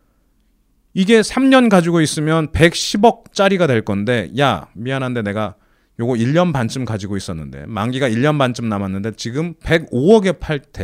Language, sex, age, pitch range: Korean, male, 30-49, 105-160 Hz